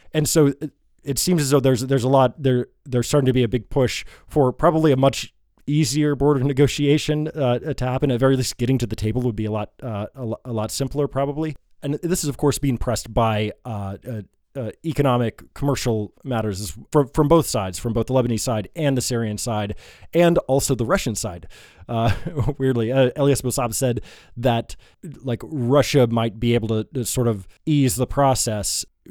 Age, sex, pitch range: 20-39, male, 110-135 Hz